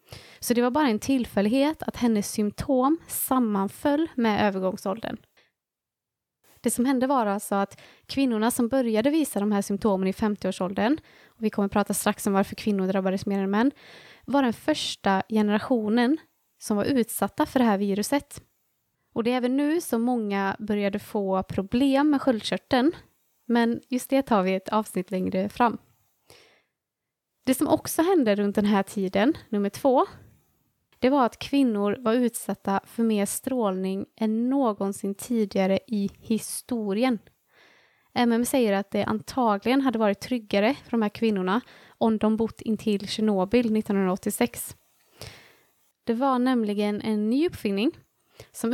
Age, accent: 20-39, native